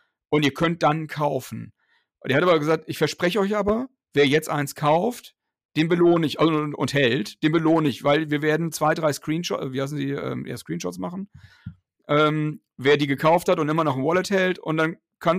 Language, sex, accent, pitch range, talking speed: German, male, German, 130-160 Hz, 200 wpm